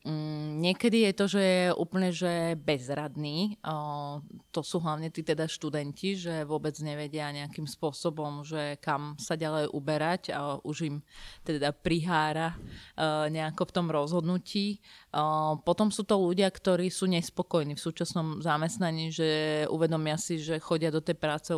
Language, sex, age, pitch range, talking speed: Slovak, female, 30-49, 150-170 Hz, 140 wpm